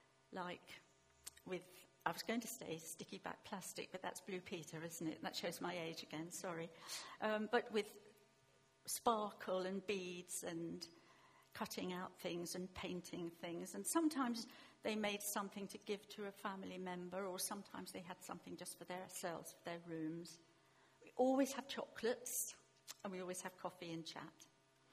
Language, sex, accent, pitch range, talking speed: English, female, British, 165-210 Hz, 165 wpm